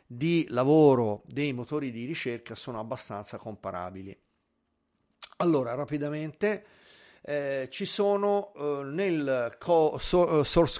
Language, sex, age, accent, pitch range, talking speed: Italian, male, 40-59, native, 120-160 Hz, 105 wpm